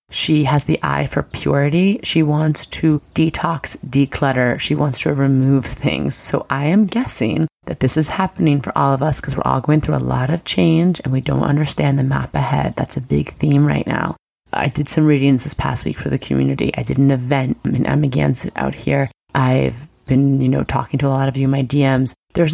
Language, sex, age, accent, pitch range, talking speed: English, female, 30-49, American, 135-155 Hz, 220 wpm